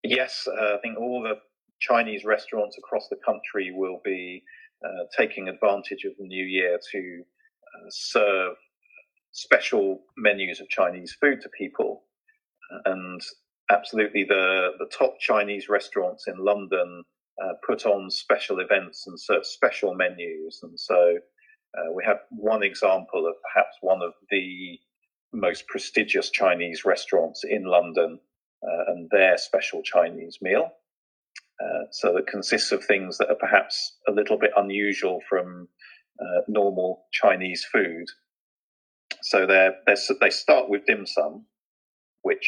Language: Chinese